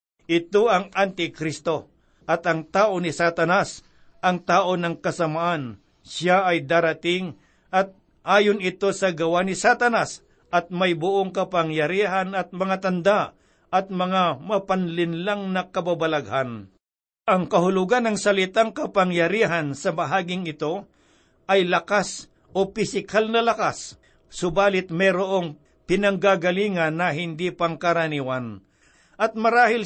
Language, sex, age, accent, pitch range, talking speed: Filipino, male, 60-79, native, 170-205 Hz, 115 wpm